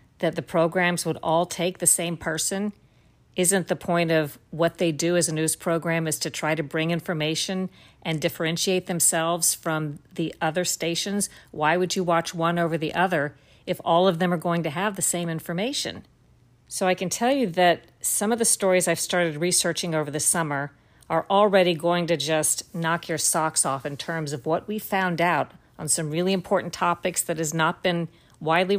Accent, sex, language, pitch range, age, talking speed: American, female, English, 160-190 Hz, 50-69, 195 wpm